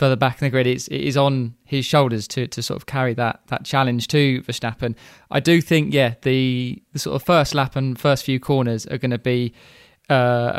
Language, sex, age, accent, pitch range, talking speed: English, male, 20-39, British, 125-150 Hz, 225 wpm